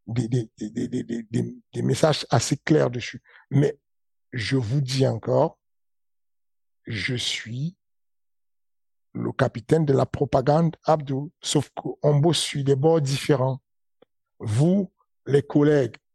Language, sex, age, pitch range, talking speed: French, male, 60-79, 125-150 Hz, 125 wpm